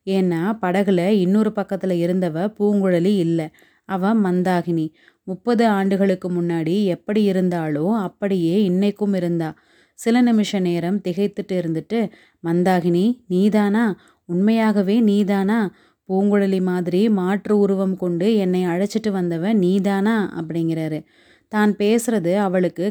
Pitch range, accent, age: 175-205 Hz, native, 30-49